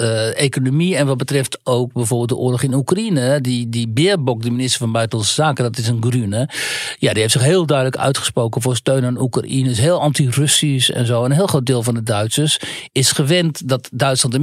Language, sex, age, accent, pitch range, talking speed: Dutch, male, 60-79, Dutch, 120-145 Hz, 210 wpm